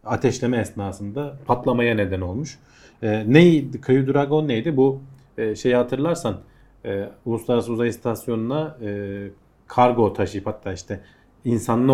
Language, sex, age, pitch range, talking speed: Turkish, male, 40-59, 105-135 Hz, 120 wpm